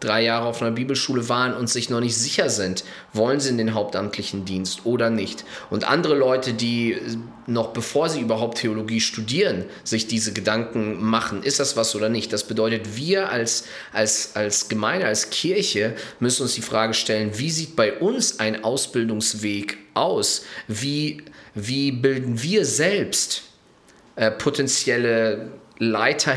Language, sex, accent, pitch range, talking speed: German, male, German, 105-120 Hz, 150 wpm